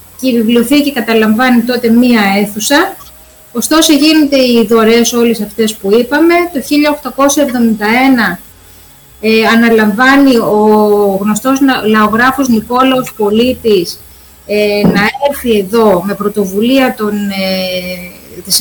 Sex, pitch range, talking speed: female, 215-280 Hz, 105 wpm